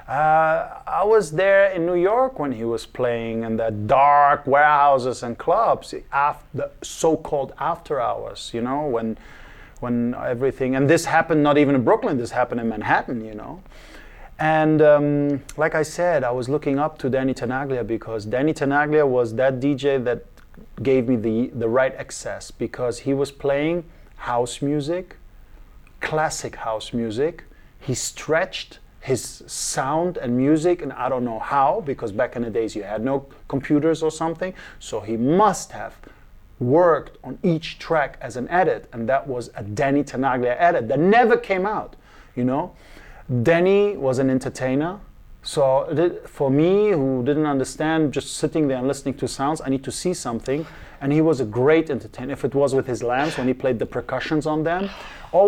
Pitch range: 125-160 Hz